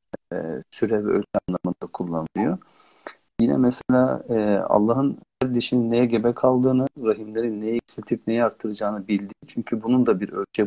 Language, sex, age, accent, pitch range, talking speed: Turkish, male, 50-69, native, 105-125 Hz, 140 wpm